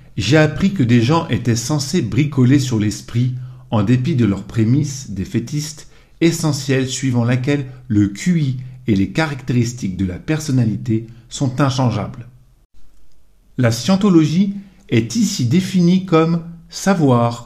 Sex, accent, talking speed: male, French, 125 wpm